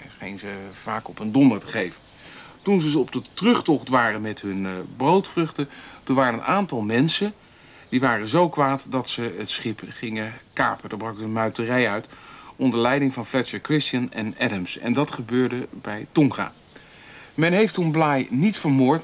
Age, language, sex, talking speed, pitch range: 60-79, Dutch, male, 175 wpm, 115-155 Hz